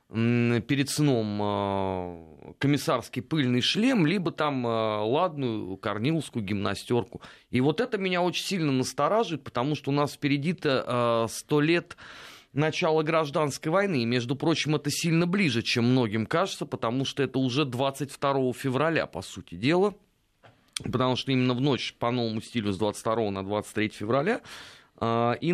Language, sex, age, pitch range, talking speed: Russian, male, 30-49, 110-145 Hz, 140 wpm